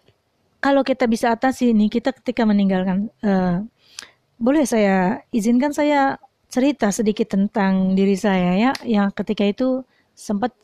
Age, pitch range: 30-49, 195-260 Hz